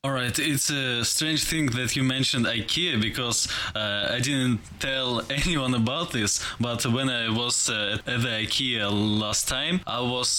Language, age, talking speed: English, 20-39, 175 wpm